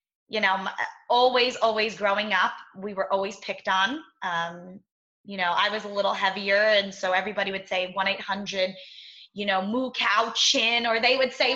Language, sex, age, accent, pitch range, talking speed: English, female, 20-39, American, 195-240 Hz, 175 wpm